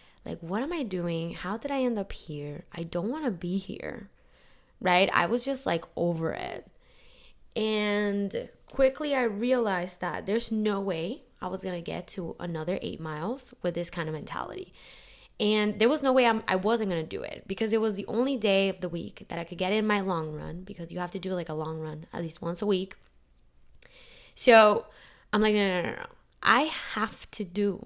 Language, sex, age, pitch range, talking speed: English, female, 10-29, 175-230 Hz, 215 wpm